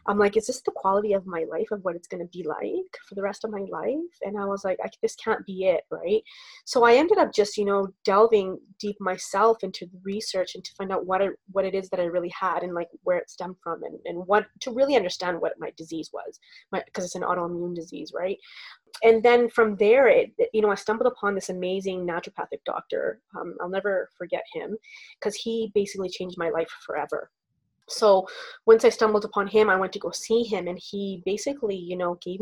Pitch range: 185-230 Hz